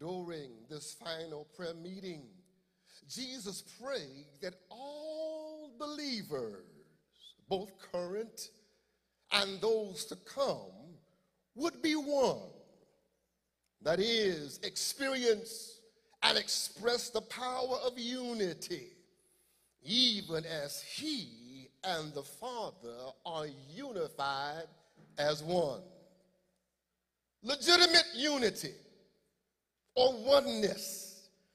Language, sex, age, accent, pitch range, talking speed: English, male, 50-69, American, 175-245 Hz, 80 wpm